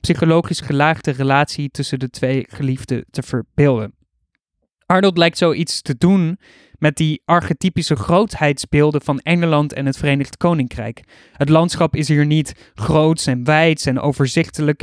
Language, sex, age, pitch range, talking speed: Dutch, male, 20-39, 135-165 Hz, 140 wpm